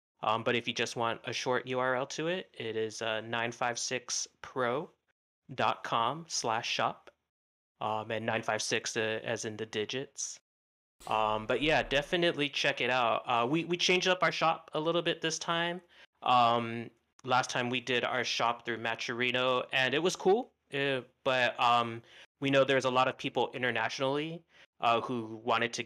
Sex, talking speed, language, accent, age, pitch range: male, 165 wpm, English, American, 30-49, 110-135 Hz